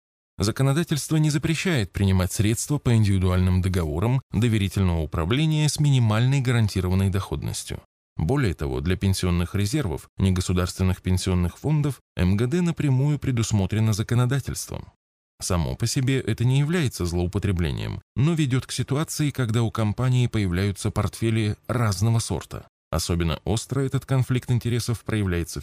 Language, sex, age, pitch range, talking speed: Russian, male, 20-39, 95-125 Hz, 115 wpm